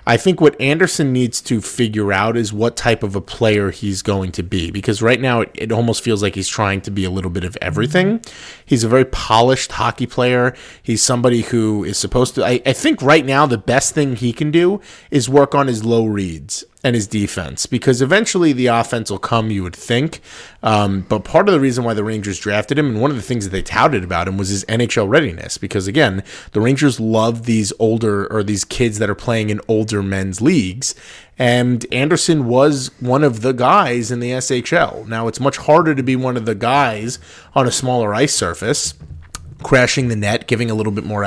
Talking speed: 220 wpm